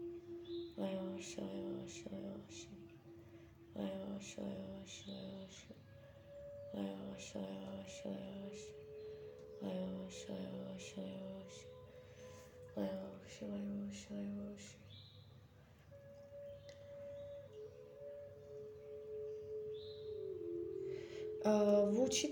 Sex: female